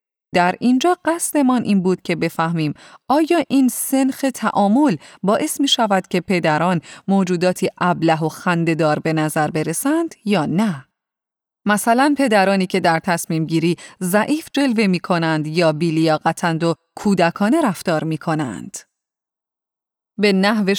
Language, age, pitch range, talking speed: Persian, 30-49, 170-245 Hz, 125 wpm